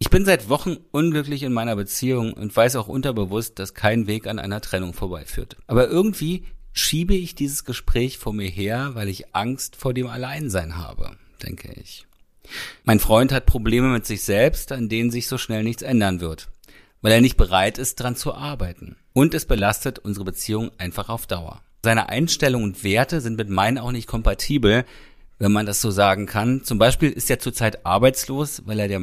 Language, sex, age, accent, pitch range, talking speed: German, male, 40-59, German, 105-135 Hz, 190 wpm